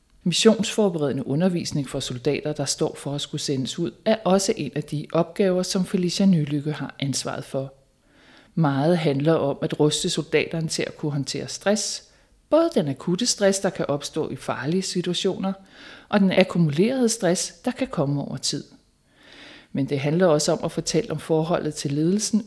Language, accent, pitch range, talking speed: Danish, native, 145-190 Hz, 170 wpm